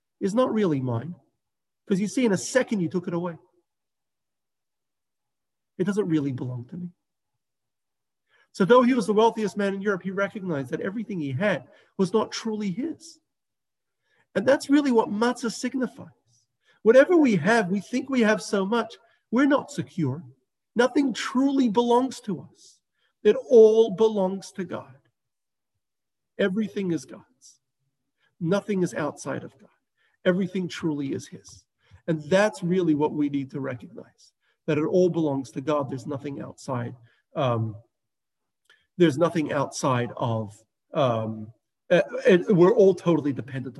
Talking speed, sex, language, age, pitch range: 145 wpm, male, English, 40-59, 140-220 Hz